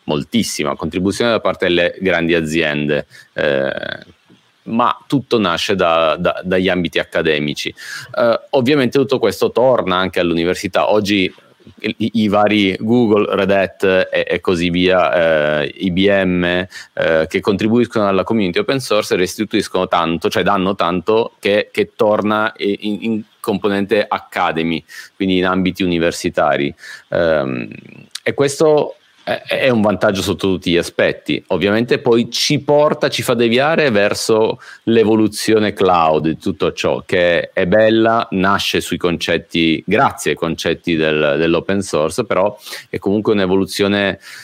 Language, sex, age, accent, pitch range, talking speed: Italian, male, 30-49, native, 85-110 Hz, 130 wpm